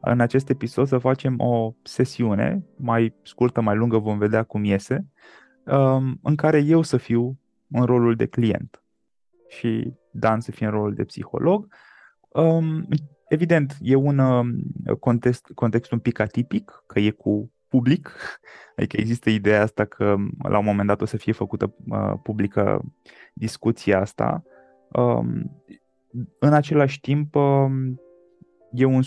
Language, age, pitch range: Romanian, 20-39, 110-140 Hz